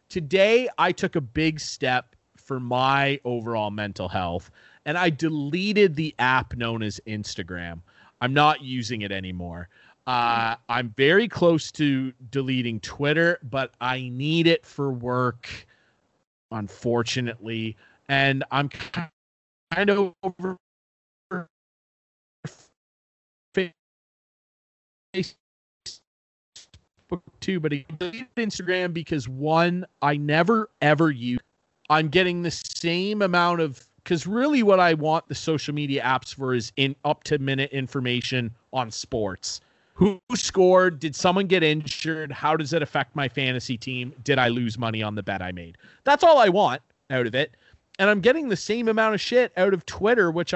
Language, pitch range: English, 125-180 Hz